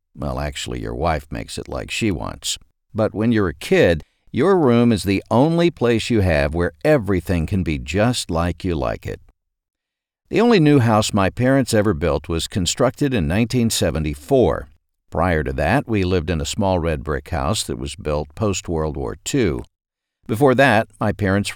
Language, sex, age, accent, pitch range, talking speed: English, male, 60-79, American, 85-115 Hz, 180 wpm